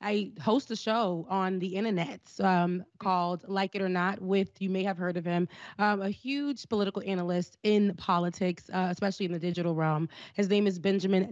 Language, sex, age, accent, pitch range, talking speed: English, female, 20-39, American, 180-220 Hz, 195 wpm